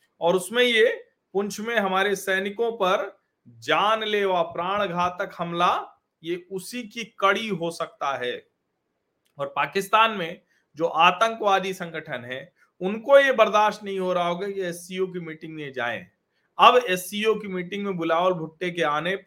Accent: native